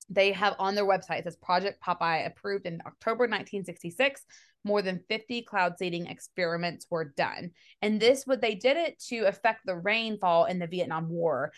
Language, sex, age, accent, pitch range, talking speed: English, female, 20-39, American, 180-225 Hz, 180 wpm